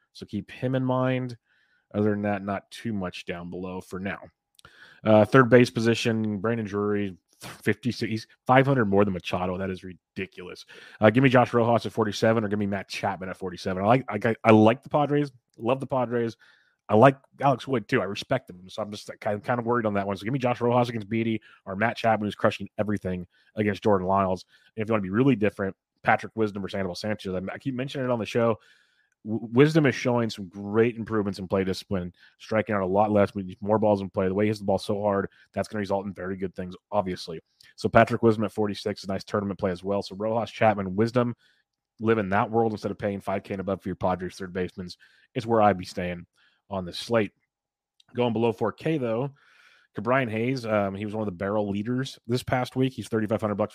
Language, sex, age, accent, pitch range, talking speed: English, male, 30-49, American, 100-120 Hz, 230 wpm